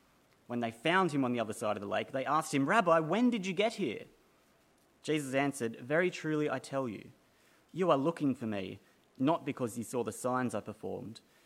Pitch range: 120-155 Hz